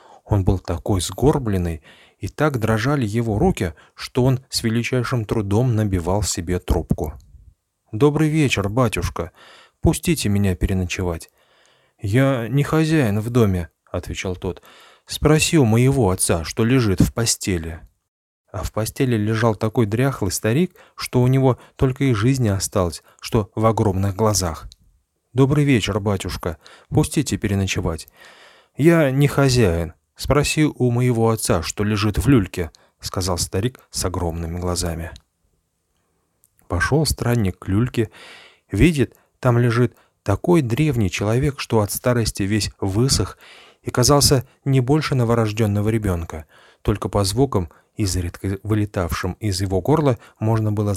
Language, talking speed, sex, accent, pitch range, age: Russian, 125 wpm, male, native, 90-125 Hz, 30-49